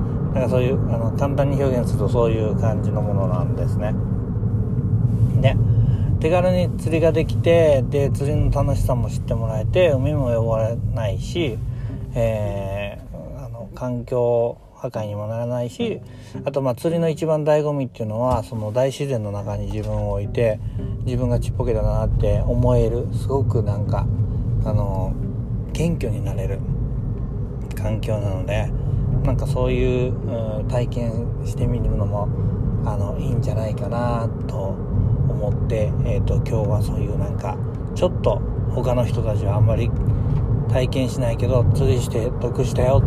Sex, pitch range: male, 110-125 Hz